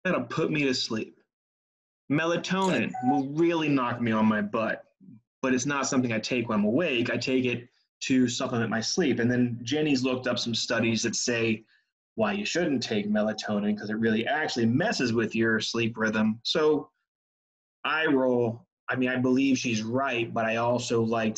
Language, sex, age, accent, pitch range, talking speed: English, male, 30-49, American, 115-135 Hz, 180 wpm